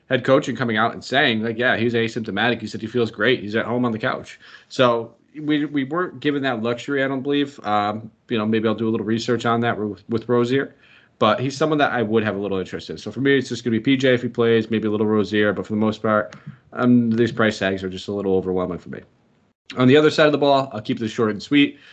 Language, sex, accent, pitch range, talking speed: English, male, American, 105-120 Hz, 280 wpm